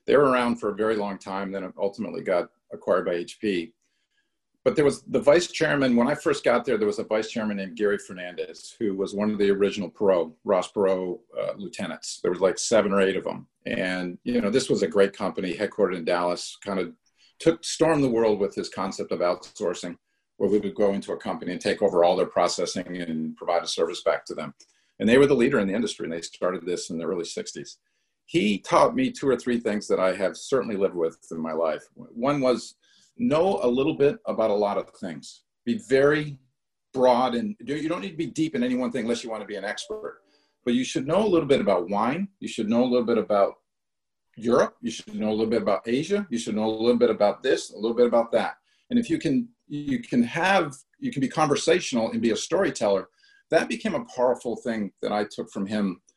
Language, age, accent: English, 50-69, American